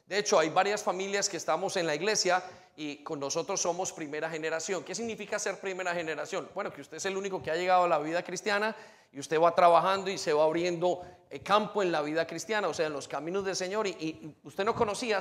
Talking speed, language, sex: 235 wpm, Spanish, male